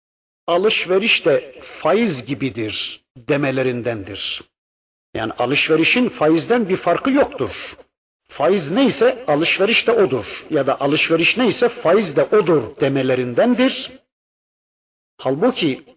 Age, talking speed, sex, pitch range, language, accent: 50-69, 95 wpm, male, 130-210 Hz, Turkish, native